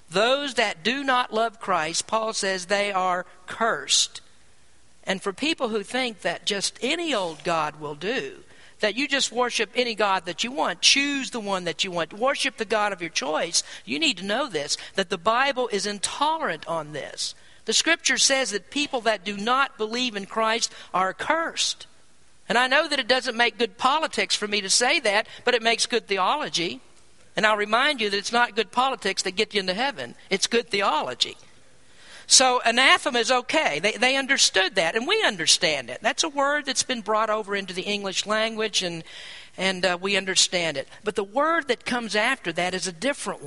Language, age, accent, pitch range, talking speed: English, 50-69, American, 195-260 Hz, 200 wpm